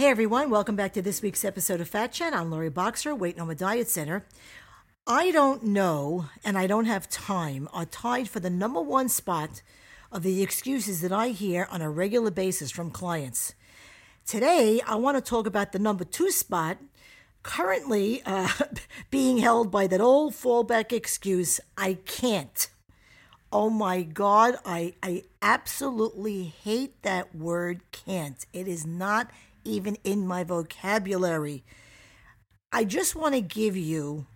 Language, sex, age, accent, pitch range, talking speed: English, female, 50-69, American, 170-230 Hz, 155 wpm